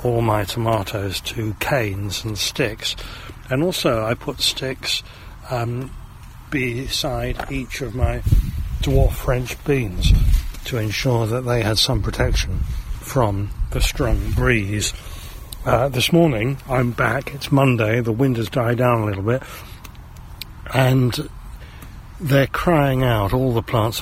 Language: English